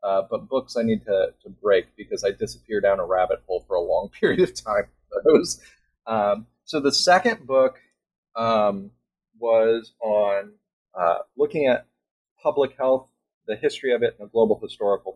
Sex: male